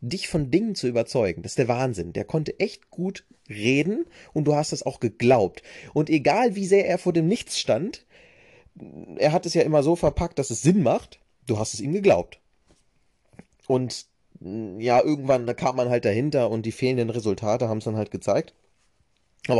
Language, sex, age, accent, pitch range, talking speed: German, male, 30-49, German, 120-160 Hz, 190 wpm